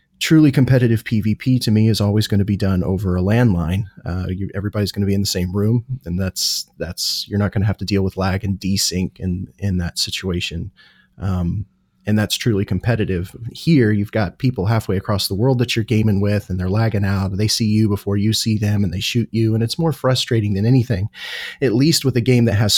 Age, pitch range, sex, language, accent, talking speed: 30-49, 100-130 Hz, male, English, American, 230 wpm